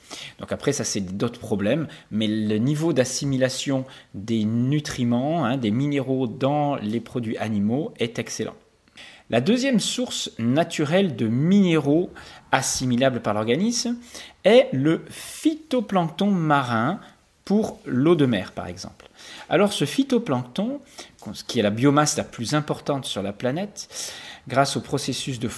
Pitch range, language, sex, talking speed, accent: 130-200 Hz, English, male, 135 wpm, French